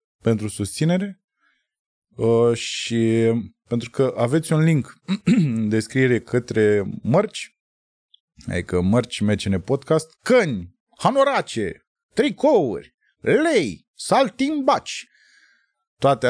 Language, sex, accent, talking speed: Romanian, male, native, 85 wpm